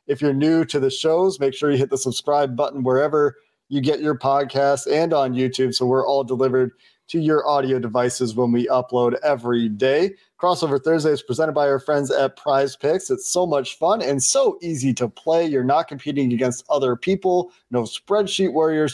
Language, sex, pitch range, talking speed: English, male, 125-150 Hz, 195 wpm